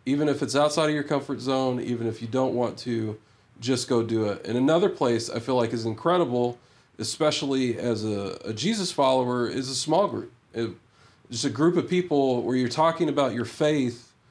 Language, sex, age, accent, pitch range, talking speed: English, male, 40-59, American, 115-140 Hz, 195 wpm